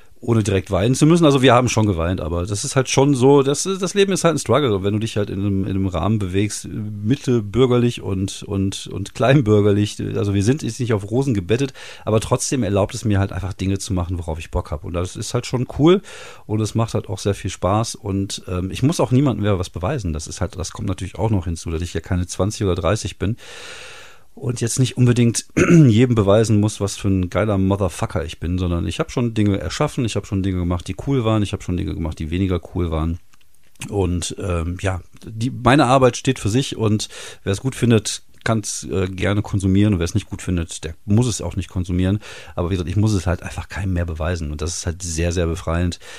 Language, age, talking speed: German, 40-59, 240 wpm